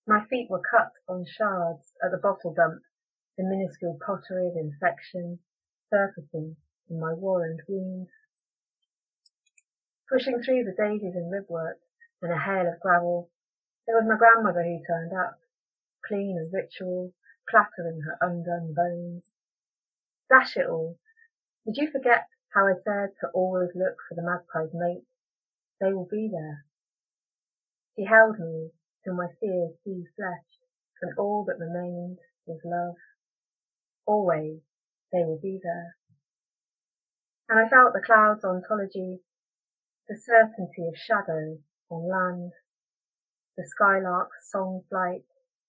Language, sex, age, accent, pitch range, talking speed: English, female, 30-49, British, 170-205 Hz, 130 wpm